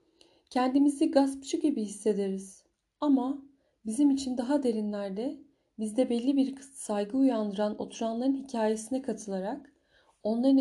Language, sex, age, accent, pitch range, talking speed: Turkish, female, 30-49, native, 215-275 Hz, 100 wpm